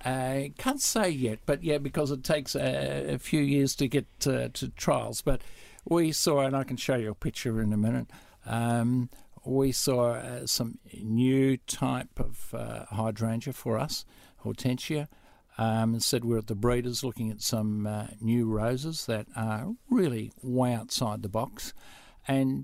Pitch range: 110-135 Hz